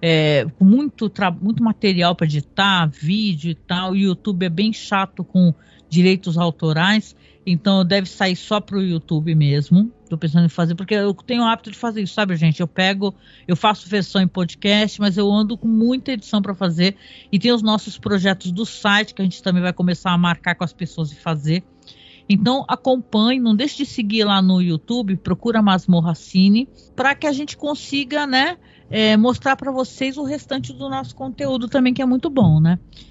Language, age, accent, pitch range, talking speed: Portuguese, 50-69, Brazilian, 175-250 Hz, 195 wpm